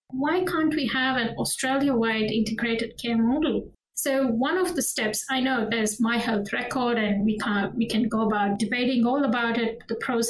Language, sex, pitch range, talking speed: English, female, 220-260 Hz, 185 wpm